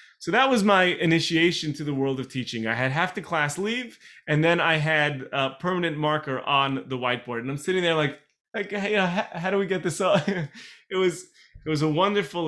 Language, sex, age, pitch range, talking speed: English, male, 30-49, 135-185 Hz, 215 wpm